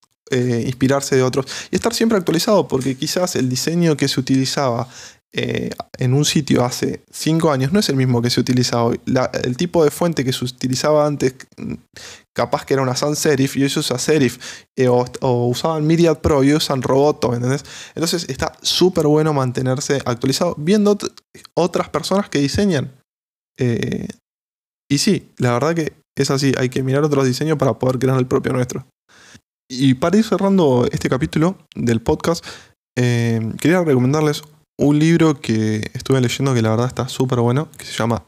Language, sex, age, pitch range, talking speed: Spanish, male, 20-39, 120-150 Hz, 180 wpm